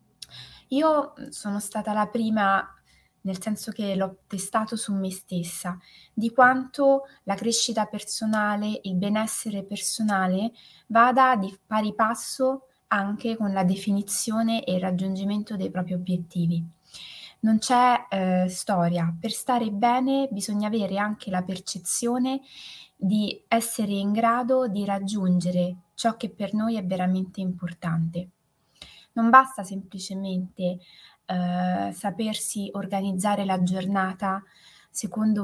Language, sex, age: Italian, female, 20-39